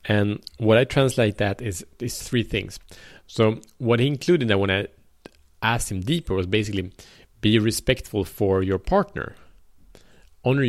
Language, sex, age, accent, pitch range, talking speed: Swedish, male, 30-49, Norwegian, 95-110 Hz, 155 wpm